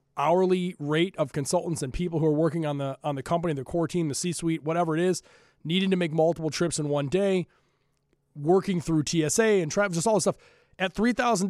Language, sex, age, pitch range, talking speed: English, male, 20-39, 145-175 Hz, 220 wpm